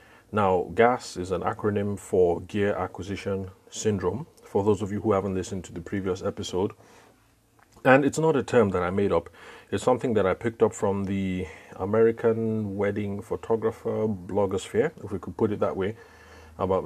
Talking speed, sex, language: 175 wpm, male, English